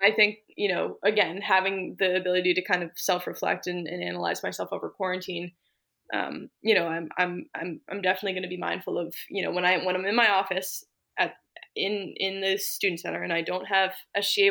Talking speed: 210 wpm